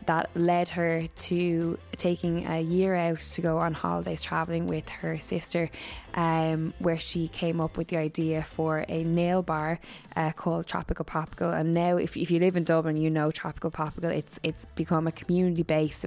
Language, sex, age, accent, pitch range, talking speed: English, female, 10-29, Irish, 160-175 Hz, 185 wpm